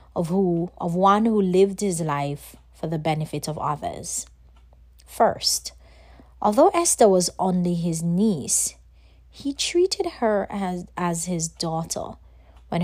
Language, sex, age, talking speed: English, female, 30-49, 130 wpm